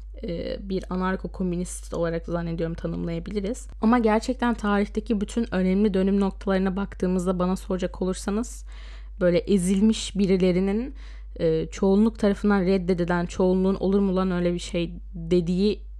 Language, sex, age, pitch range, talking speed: Turkish, female, 10-29, 180-215 Hz, 115 wpm